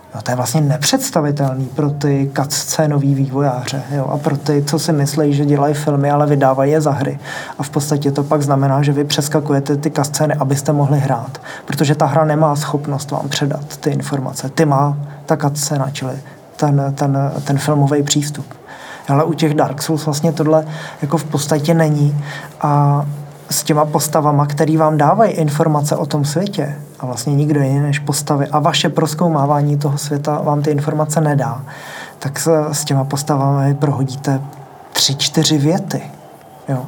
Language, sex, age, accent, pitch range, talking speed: Czech, male, 20-39, native, 140-155 Hz, 170 wpm